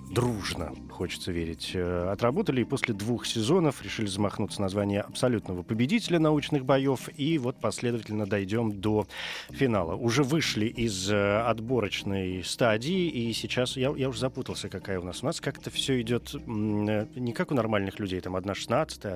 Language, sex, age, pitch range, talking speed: Russian, male, 30-49, 100-130 Hz, 150 wpm